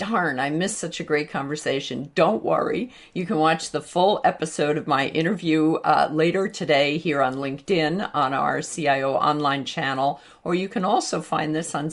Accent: American